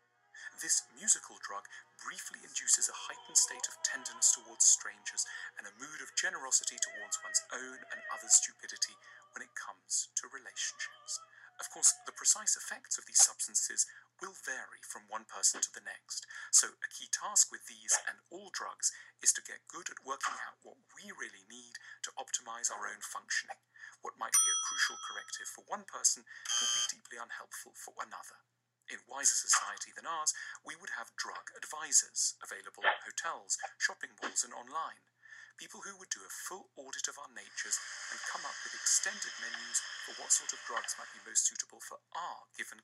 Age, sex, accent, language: 40-59, male, British, English